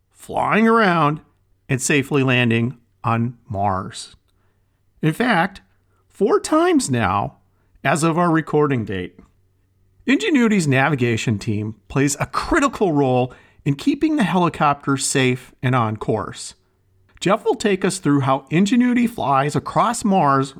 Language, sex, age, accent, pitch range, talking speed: English, male, 40-59, American, 105-160 Hz, 120 wpm